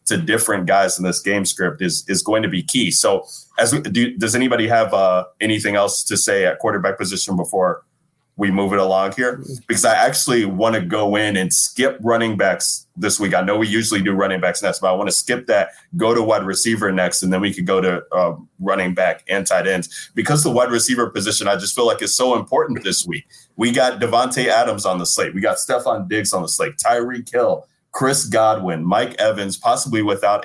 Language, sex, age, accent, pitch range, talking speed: English, male, 20-39, American, 95-110 Hz, 225 wpm